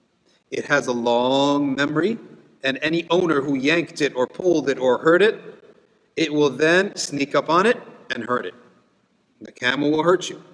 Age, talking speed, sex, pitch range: 50-69, 180 wpm, male, 135-165 Hz